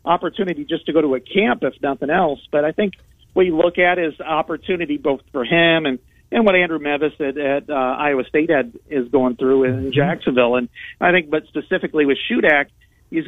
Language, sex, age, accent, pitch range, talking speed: English, male, 50-69, American, 130-165 Hz, 215 wpm